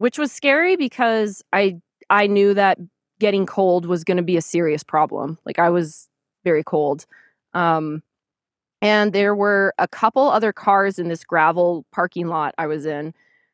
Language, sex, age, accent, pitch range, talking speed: English, female, 20-39, American, 170-220 Hz, 170 wpm